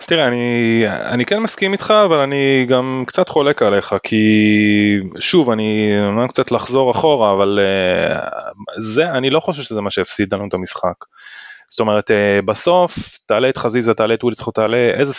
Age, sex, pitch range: 20-39, male, 105-135 Hz